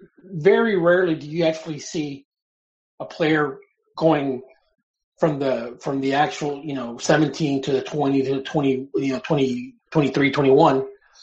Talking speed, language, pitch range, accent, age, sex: 170 wpm, English, 135-175 Hz, American, 30-49, male